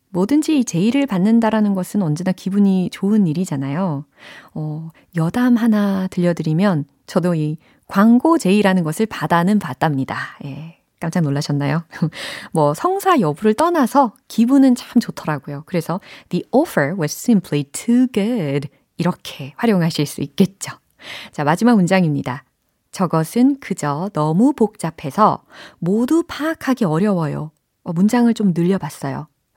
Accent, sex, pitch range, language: native, female, 160-255 Hz, Korean